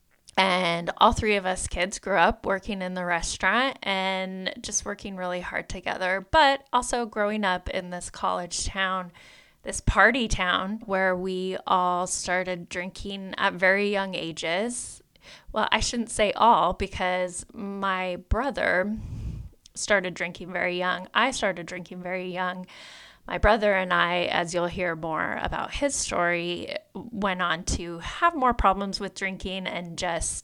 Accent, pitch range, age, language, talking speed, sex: American, 180-210 Hz, 20-39, English, 150 wpm, female